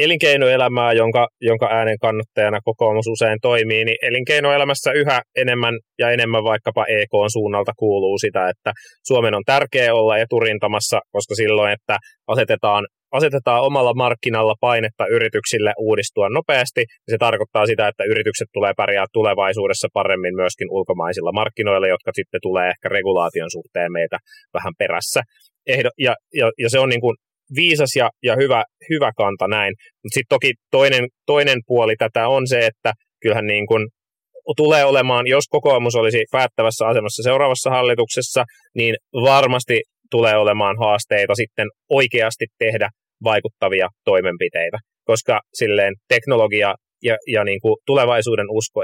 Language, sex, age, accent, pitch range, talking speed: Finnish, male, 20-39, native, 110-150 Hz, 140 wpm